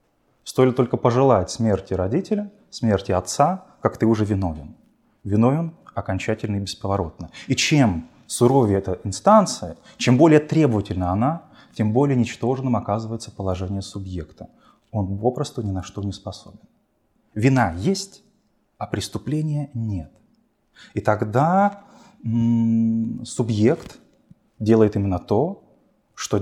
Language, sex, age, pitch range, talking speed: Russian, male, 20-39, 100-135 Hz, 115 wpm